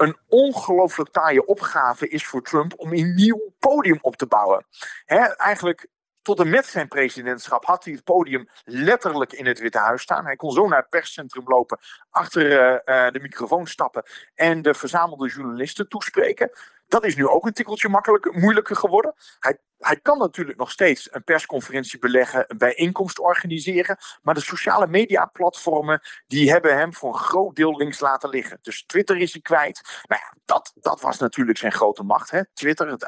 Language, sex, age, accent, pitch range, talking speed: Dutch, male, 50-69, Dutch, 135-195 Hz, 175 wpm